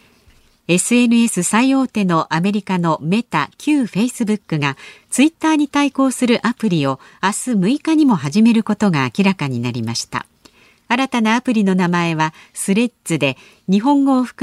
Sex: female